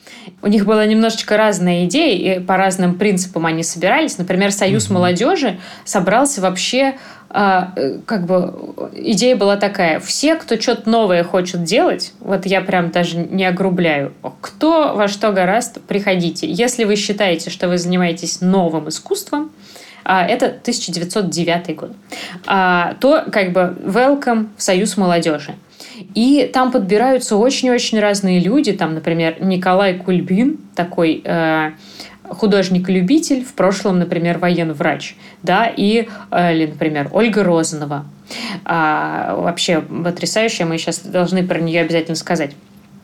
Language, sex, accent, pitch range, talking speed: Russian, female, native, 175-215 Hz, 125 wpm